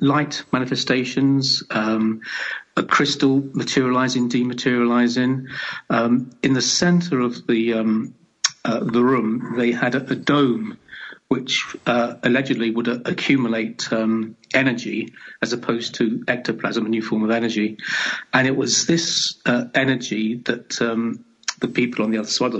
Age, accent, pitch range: 40-59, British, 115-135 Hz